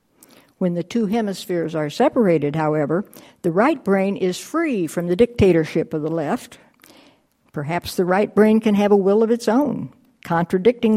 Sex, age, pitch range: female, 60-79, 180-230 Hz